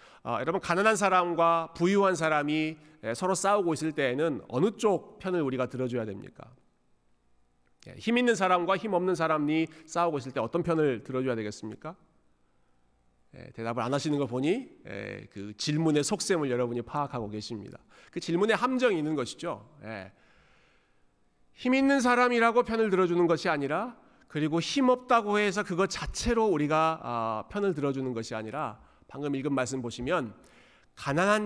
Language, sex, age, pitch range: Korean, male, 40-59, 120-185 Hz